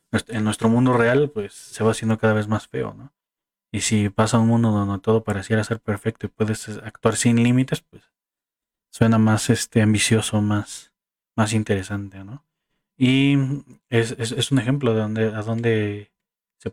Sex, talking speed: male, 170 wpm